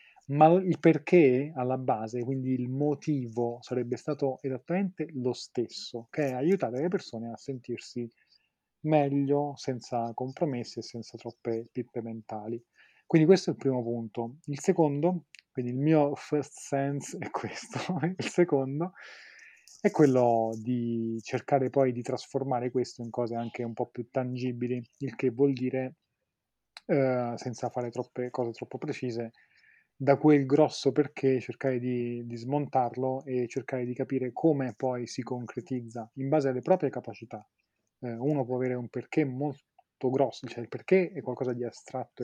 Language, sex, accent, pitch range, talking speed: Italian, male, native, 120-140 Hz, 150 wpm